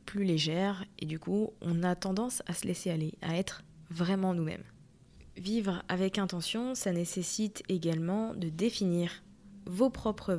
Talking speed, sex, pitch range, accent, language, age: 150 wpm, female, 170-200 Hz, French, French, 20-39